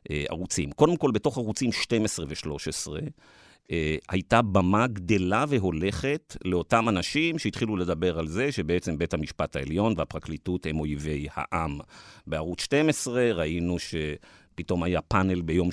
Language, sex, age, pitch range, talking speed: Hebrew, male, 50-69, 80-105 Hz, 130 wpm